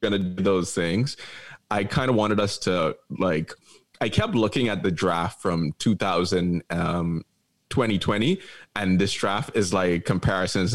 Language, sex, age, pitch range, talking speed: English, male, 20-39, 90-115 Hz, 155 wpm